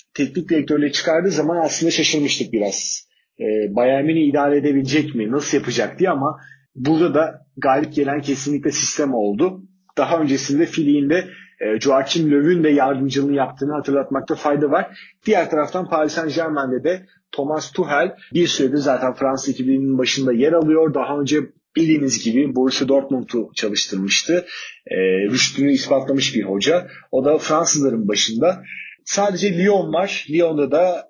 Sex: male